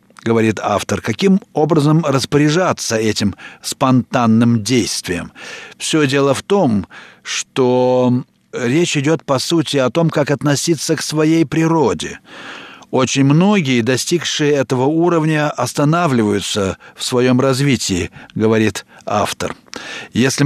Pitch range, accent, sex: 120-155 Hz, native, male